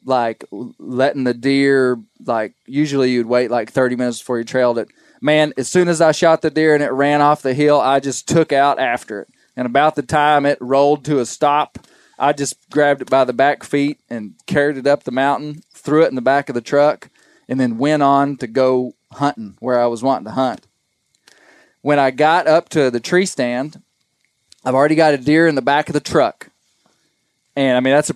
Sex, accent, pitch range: male, American, 125-150 Hz